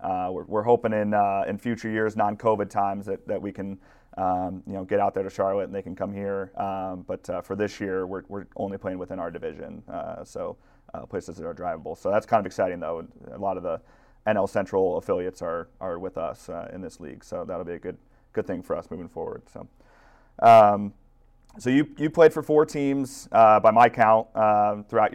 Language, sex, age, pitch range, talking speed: English, male, 30-49, 100-110 Hz, 225 wpm